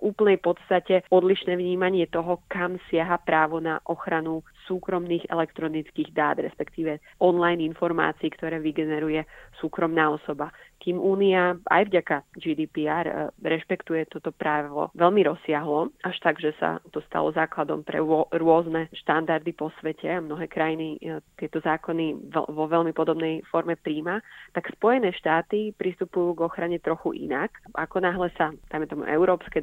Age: 20-39